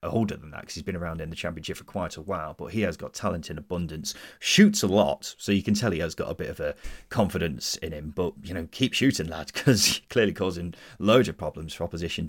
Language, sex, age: English, male, 30-49